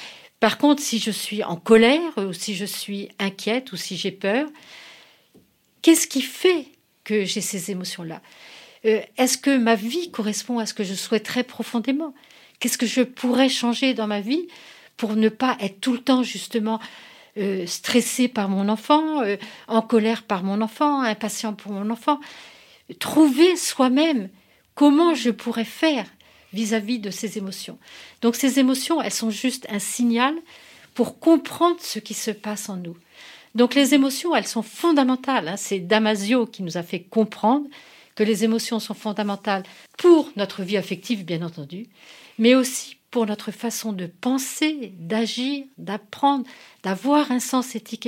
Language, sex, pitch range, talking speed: French, female, 210-270 Hz, 160 wpm